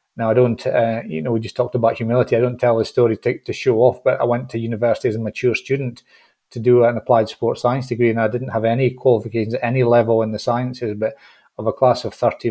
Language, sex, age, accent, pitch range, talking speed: English, male, 40-59, British, 115-130 Hz, 260 wpm